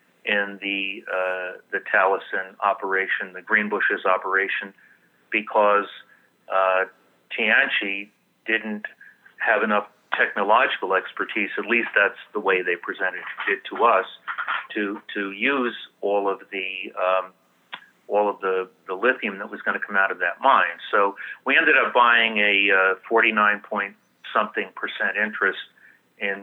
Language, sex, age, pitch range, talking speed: English, male, 40-59, 100-110 Hz, 140 wpm